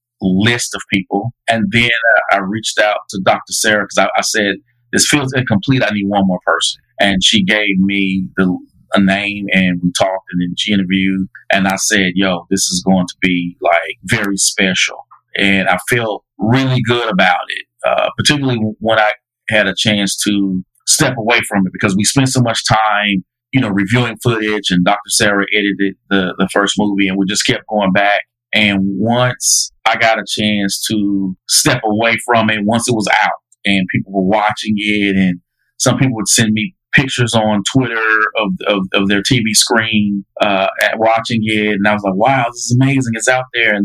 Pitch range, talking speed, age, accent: 100-120 Hz, 195 wpm, 40-59, American